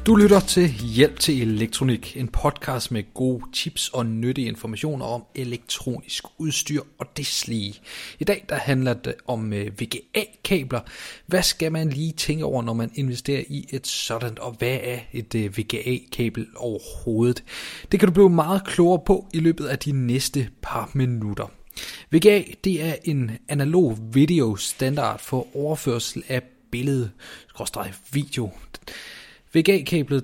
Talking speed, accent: 140 wpm, native